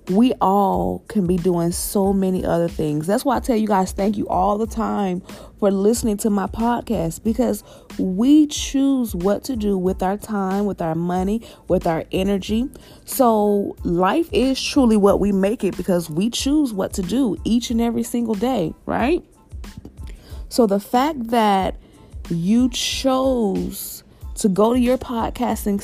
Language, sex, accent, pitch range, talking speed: English, female, American, 190-240 Hz, 165 wpm